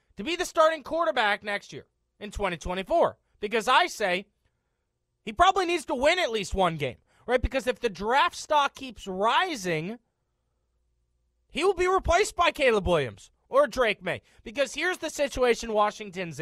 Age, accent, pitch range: 30-49, American, 195-285 Hz